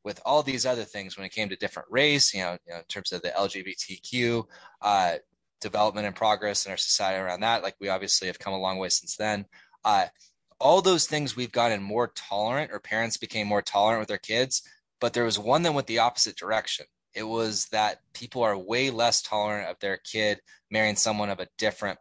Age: 20-39